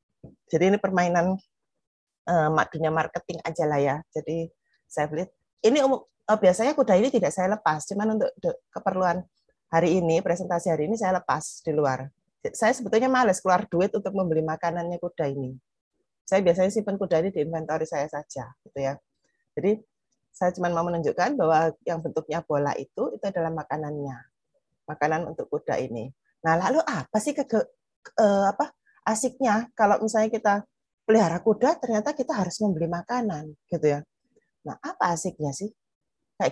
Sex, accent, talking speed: female, native, 155 wpm